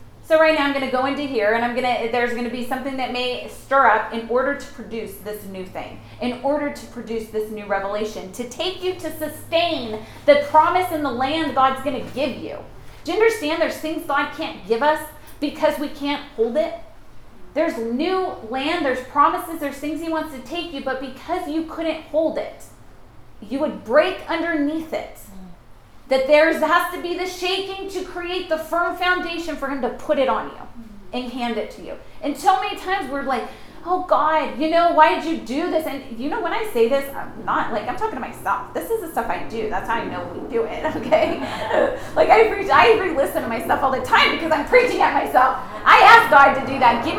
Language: English